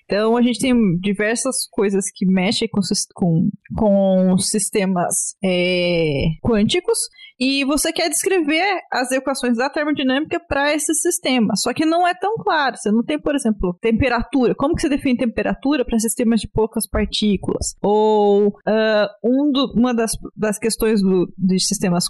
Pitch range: 205-270 Hz